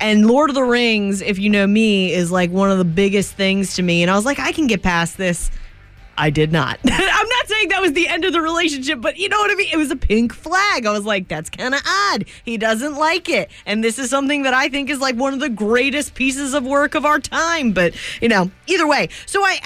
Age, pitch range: 20-39, 200-295 Hz